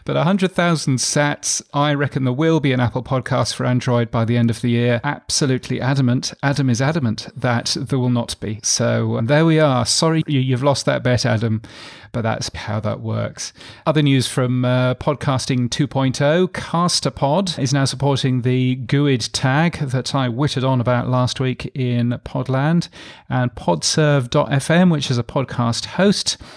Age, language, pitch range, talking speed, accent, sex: 40-59, English, 120-145 Hz, 165 wpm, British, male